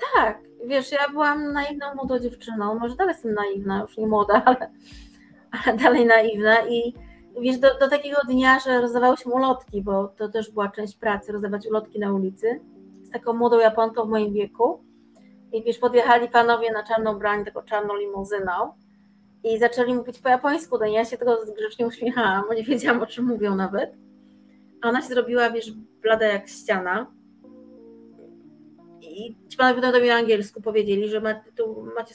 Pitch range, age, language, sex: 215-255 Hz, 30-49, Polish, female